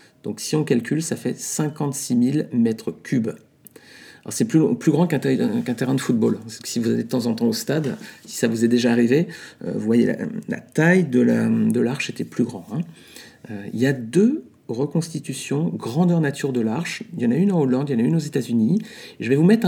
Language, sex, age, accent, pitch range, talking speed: French, male, 40-59, French, 125-180 Hz, 240 wpm